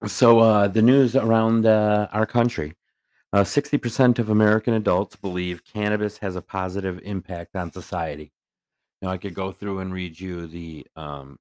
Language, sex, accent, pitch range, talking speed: English, male, American, 85-100 Hz, 165 wpm